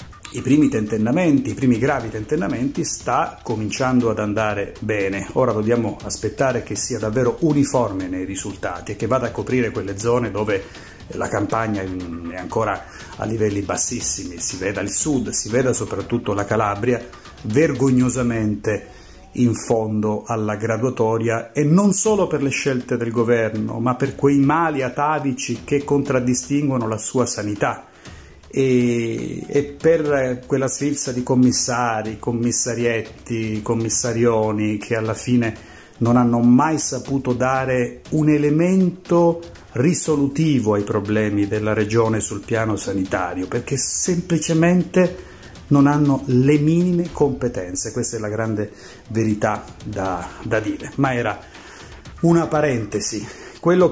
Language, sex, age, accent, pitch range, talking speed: Italian, male, 30-49, native, 110-140 Hz, 130 wpm